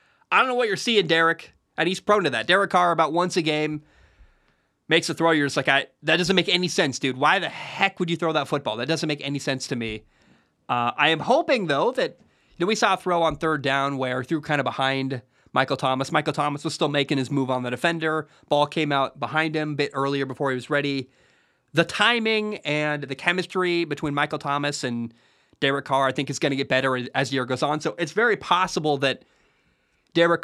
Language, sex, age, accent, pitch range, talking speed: English, male, 30-49, American, 130-160 Hz, 235 wpm